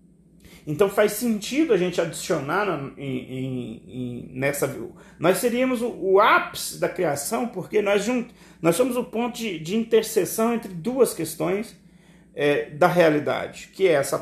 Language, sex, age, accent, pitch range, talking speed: Portuguese, male, 40-59, Brazilian, 170-225 Hz, 155 wpm